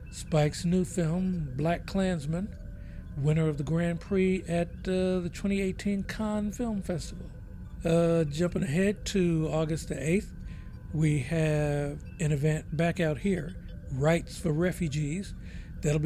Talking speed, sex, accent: 130 wpm, male, American